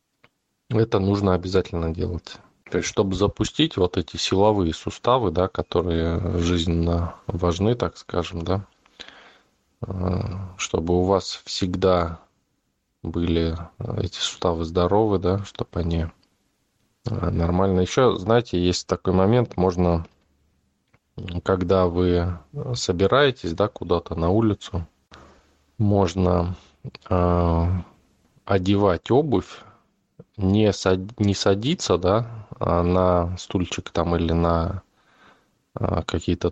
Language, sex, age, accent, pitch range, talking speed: Russian, male, 20-39, native, 85-100 Hz, 90 wpm